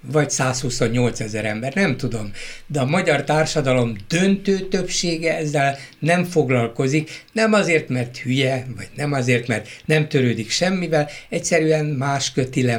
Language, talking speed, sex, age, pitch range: Hungarian, 135 wpm, male, 60-79, 130-165 Hz